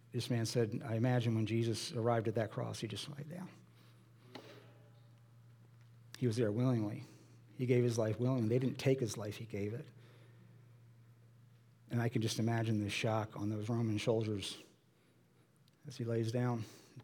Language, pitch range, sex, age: English, 120-140 Hz, male, 50-69